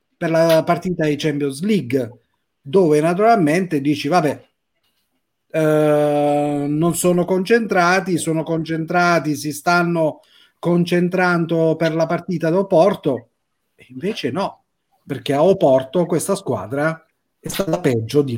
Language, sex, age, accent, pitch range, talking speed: Italian, male, 40-59, native, 145-180 Hz, 110 wpm